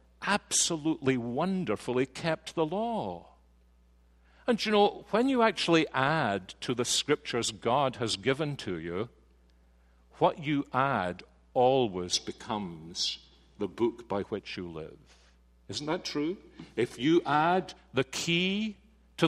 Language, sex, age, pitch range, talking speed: English, male, 50-69, 115-175 Hz, 125 wpm